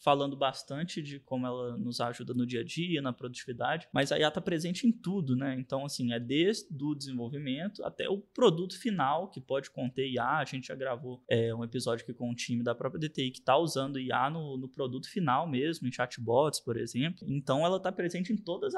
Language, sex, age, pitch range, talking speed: Portuguese, male, 20-39, 125-165 Hz, 210 wpm